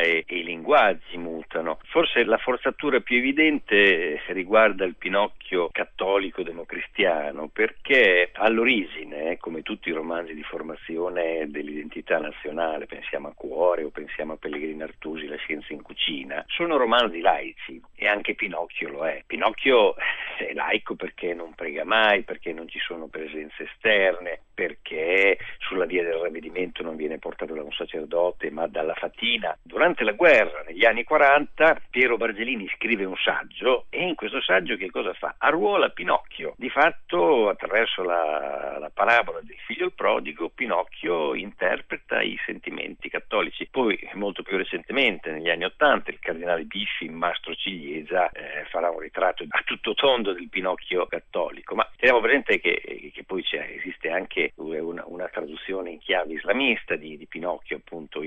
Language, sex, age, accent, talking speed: Italian, male, 50-69, native, 150 wpm